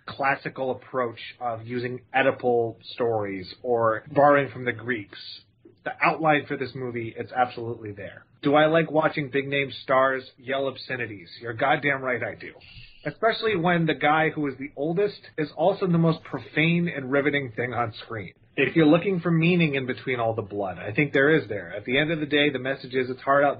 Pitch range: 115-145 Hz